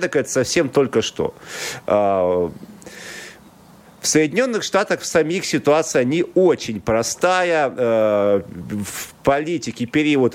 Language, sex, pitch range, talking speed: Russian, male, 105-135 Hz, 80 wpm